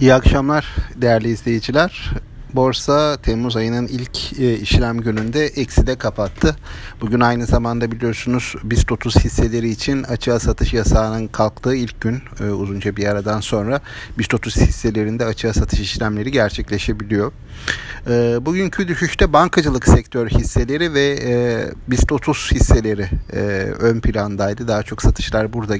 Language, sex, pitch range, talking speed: Turkish, male, 105-135 Hz, 125 wpm